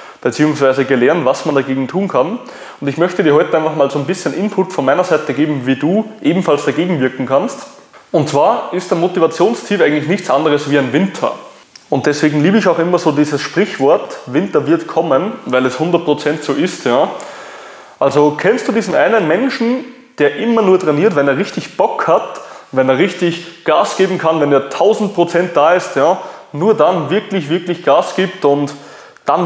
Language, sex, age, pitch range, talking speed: German, male, 20-39, 140-185 Hz, 185 wpm